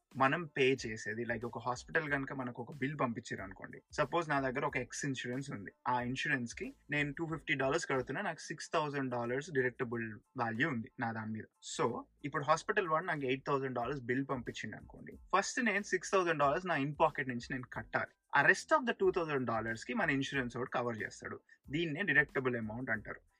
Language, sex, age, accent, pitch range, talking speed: Telugu, male, 30-49, native, 125-165 Hz, 185 wpm